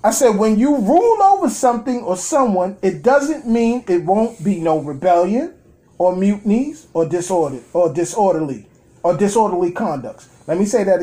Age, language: 30-49, English